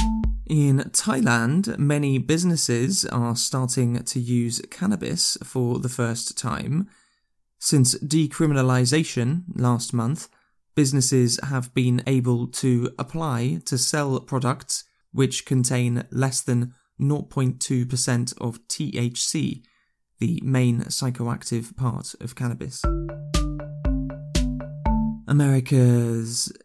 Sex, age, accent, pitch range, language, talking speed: male, 20-39, British, 120-145 Hz, English, 90 wpm